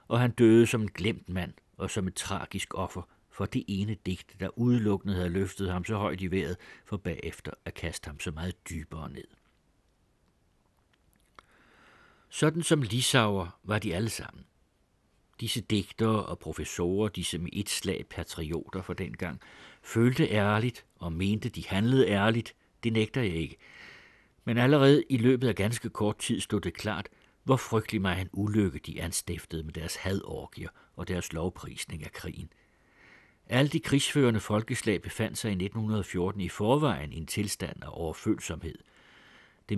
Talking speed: 160 wpm